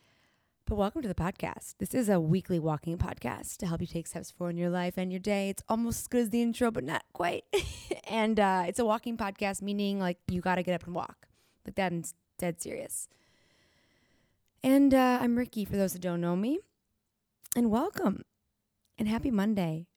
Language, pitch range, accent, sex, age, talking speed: English, 170-220 Hz, American, female, 20-39, 200 wpm